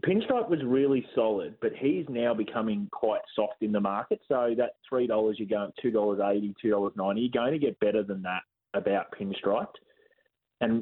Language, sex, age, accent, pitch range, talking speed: English, male, 20-39, Australian, 105-125 Hz, 190 wpm